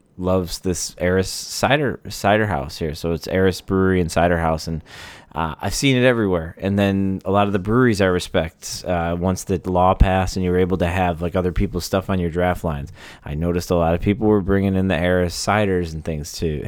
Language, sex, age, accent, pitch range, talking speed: English, male, 20-39, American, 85-100 Hz, 225 wpm